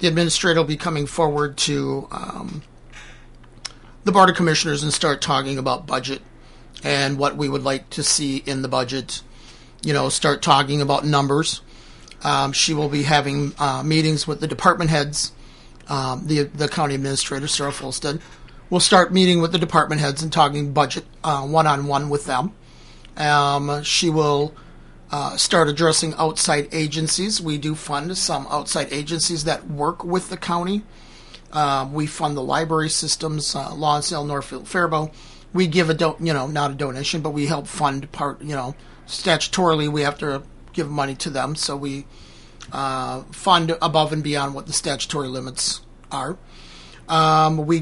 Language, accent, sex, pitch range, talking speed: English, American, male, 140-160 Hz, 170 wpm